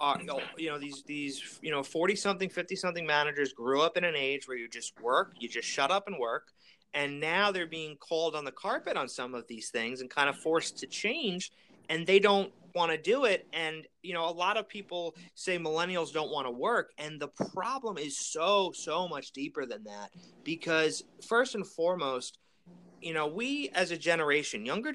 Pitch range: 135-180 Hz